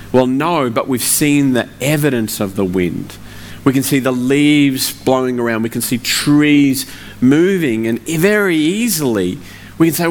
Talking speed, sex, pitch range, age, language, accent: 165 wpm, male, 110-145 Hz, 40-59, English, Australian